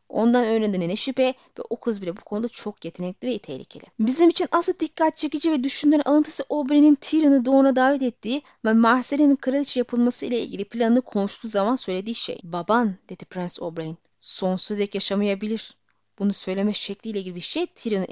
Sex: female